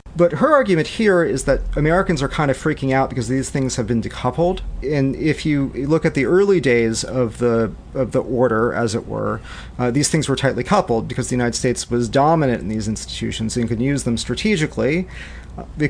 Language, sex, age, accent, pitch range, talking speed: English, male, 40-59, American, 115-140 Hz, 210 wpm